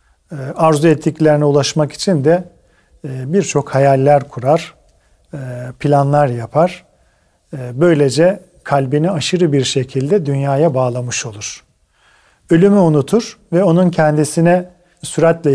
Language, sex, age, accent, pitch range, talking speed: Turkish, male, 40-59, native, 135-165 Hz, 95 wpm